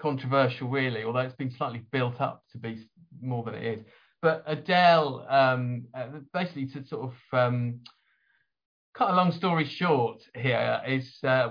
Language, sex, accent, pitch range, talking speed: English, male, British, 115-140 Hz, 155 wpm